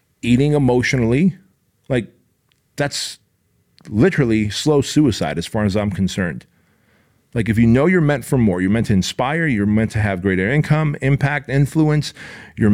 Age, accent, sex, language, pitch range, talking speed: 40-59, American, male, English, 115-155 Hz, 155 wpm